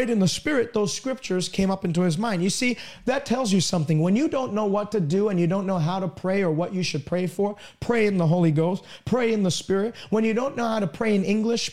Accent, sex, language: American, male, English